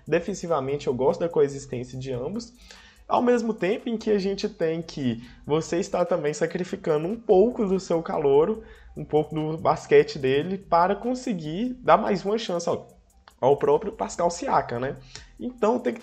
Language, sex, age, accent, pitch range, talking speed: Portuguese, male, 20-39, Brazilian, 140-205 Hz, 170 wpm